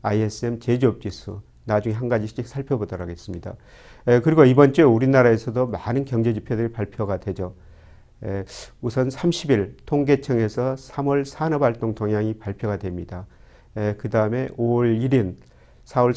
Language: Korean